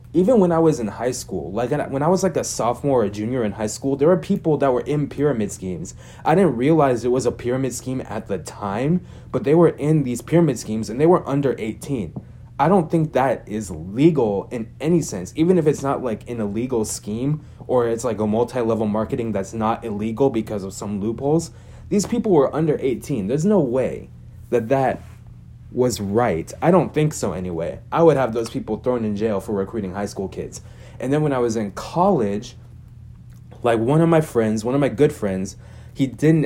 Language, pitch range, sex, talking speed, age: English, 110-140 Hz, male, 210 wpm, 20-39